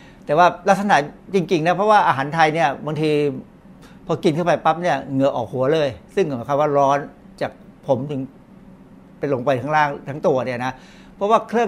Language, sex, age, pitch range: Thai, male, 60-79, 135-175 Hz